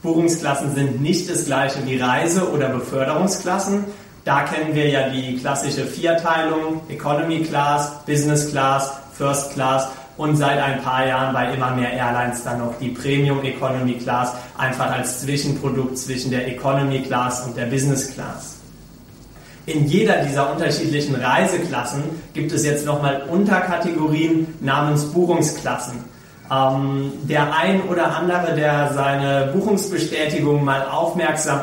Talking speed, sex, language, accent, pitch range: 130 wpm, male, German, German, 135-155 Hz